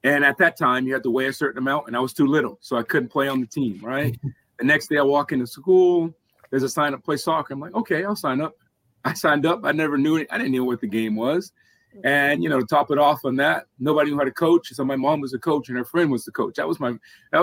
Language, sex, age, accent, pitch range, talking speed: English, male, 30-49, American, 130-155 Hz, 305 wpm